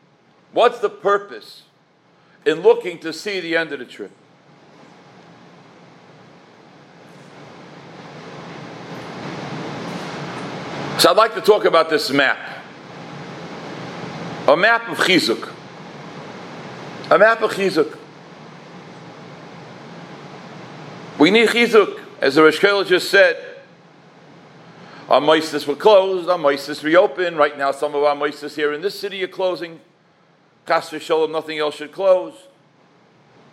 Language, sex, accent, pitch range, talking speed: English, male, American, 155-205 Hz, 110 wpm